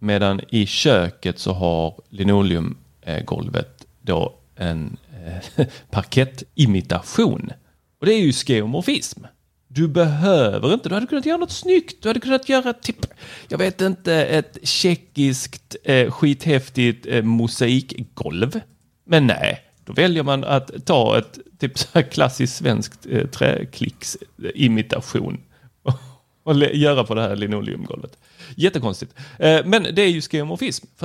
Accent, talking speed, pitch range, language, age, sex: native, 125 wpm, 115-165 Hz, Swedish, 30-49, male